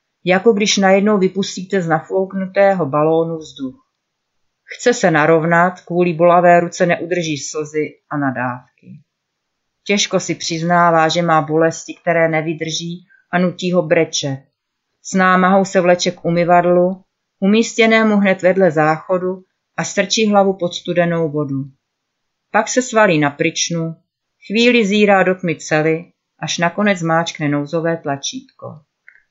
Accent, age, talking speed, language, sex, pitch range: native, 40-59, 125 wpm, Czech, female, 160-190 Hz